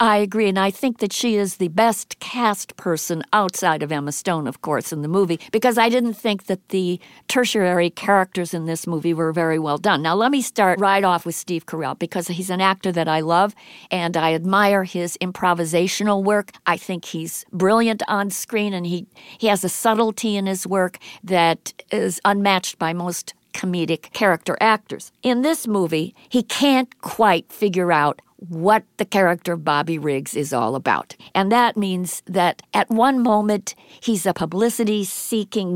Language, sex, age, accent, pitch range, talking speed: English, female, 50-69, American, 175-220 Hz, 180 wpm